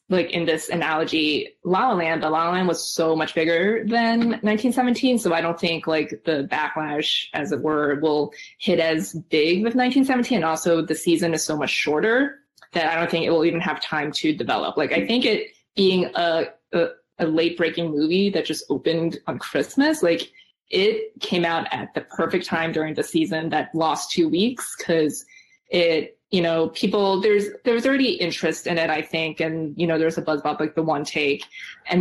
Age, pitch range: 20-39, 160-190 Hz